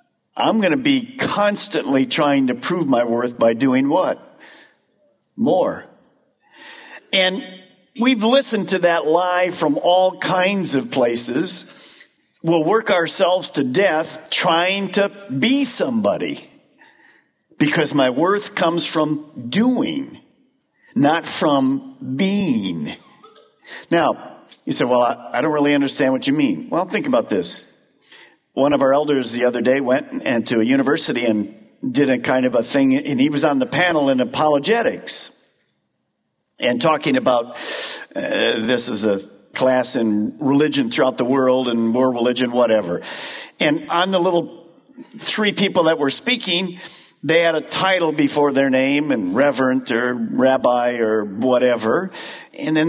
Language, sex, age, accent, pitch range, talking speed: English, male, 50-69, American, 130-205 Hz, 145 wpm